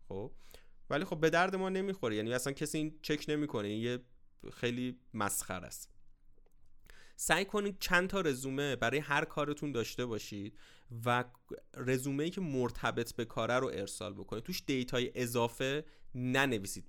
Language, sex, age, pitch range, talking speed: Persian, male, 30-49, 110-145 Hz, 145 wpm